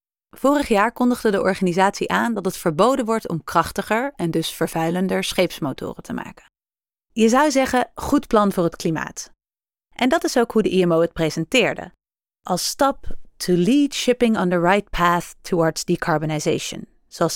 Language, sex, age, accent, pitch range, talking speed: Dutch, female, 30-49, Dutch, 175-240 Hz, 165 wpm